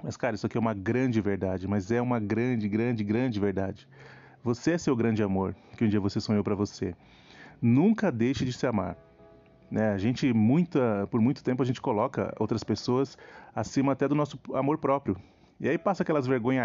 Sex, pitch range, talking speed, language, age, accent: male, 105-130 Hz, 200 wpm, Portuguese, 30-49, Brazilian